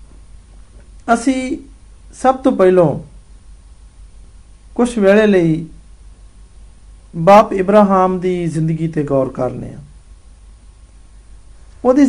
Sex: male